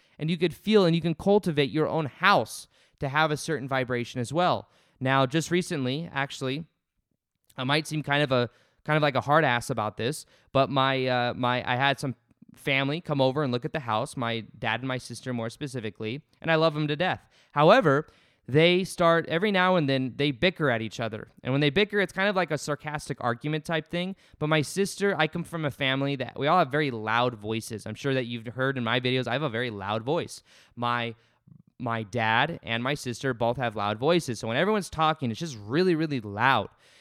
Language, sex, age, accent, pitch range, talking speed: English, male, 20-39, American, 120-160 Hz, 220 wpm